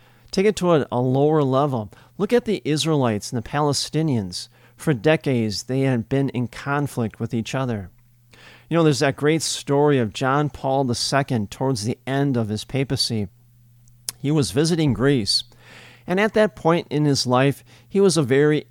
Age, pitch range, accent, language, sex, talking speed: 50-69, 120-160 Hz, American, English, male, 175 wpm